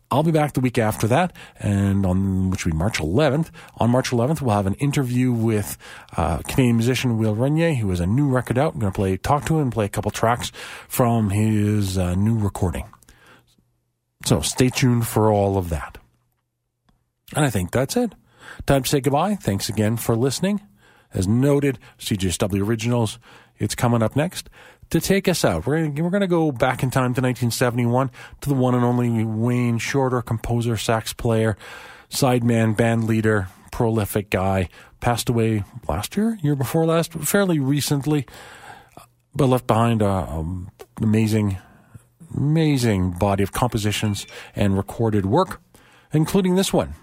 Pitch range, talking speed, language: 105-140 Hz, 165 wpm, English